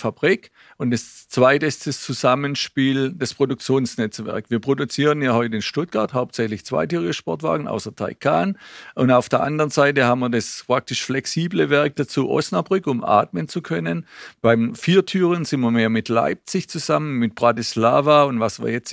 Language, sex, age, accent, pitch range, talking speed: German, male, 50-69, German, 120-150 Hz, 165 wpm